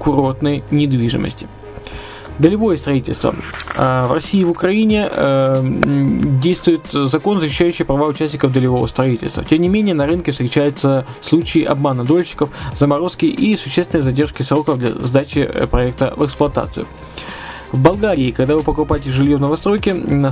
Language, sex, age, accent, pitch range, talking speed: Russian, male, 20-39, native, 130-165 Hz, 125 wpm